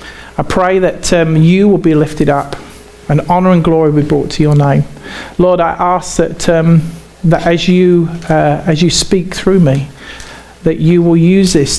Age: 40-59